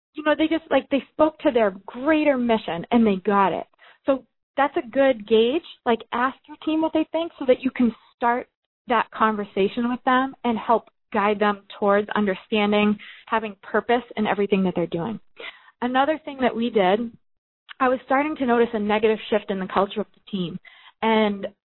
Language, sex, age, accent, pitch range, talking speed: English, female, 20-39, American, 205-265 Hz, 190 wpm